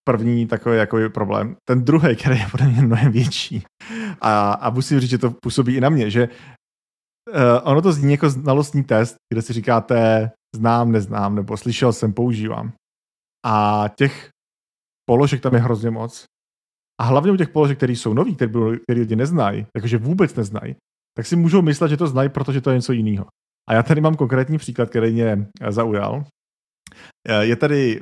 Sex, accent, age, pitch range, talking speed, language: male, native, 40-59, 110-130 Hz, 175 wpm, Czech